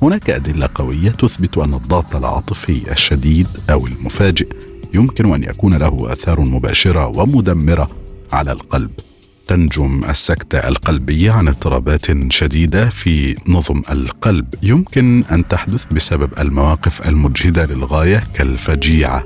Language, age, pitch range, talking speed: Arabic, 50-69, 75-100 Hz, 110 wpm